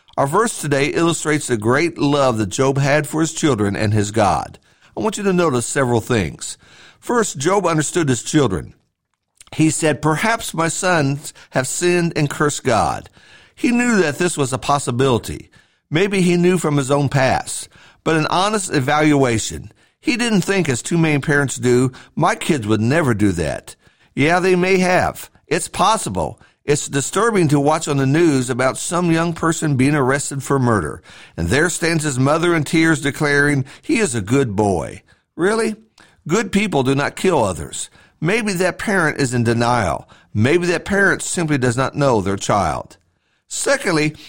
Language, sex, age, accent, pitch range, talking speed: English, male, 50-69, American, 135-175 Hz, 170 wpm